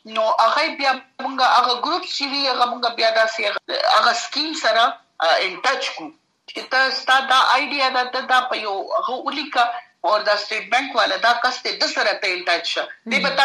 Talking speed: 180 wpm